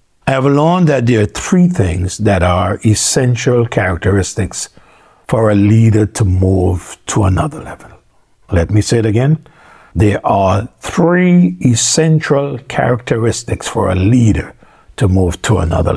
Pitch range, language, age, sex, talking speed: 95-130 Hz, English, 60-79, male, 140 wpm